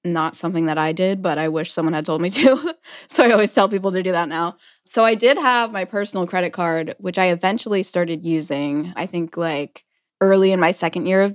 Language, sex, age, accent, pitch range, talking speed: English, female, 10-29, American, 165-195 Hz, 235 wpm